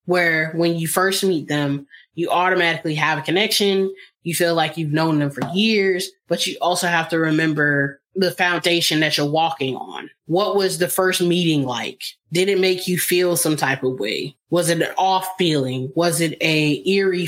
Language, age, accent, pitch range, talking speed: English, 20-39, American, 160-200 Hz, 190 wpm